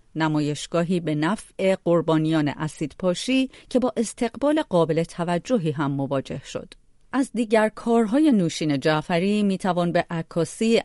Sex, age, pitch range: female, 40-59, 155-220 Hz